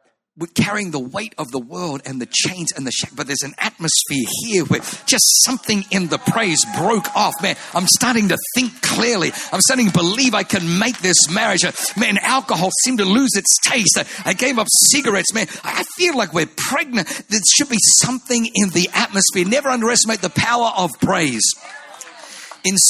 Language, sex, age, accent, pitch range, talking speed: English, male, 50-69, British, 180-235 Hz, 190 wpm